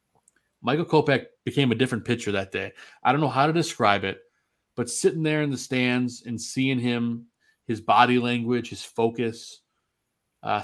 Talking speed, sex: 170 wpm, male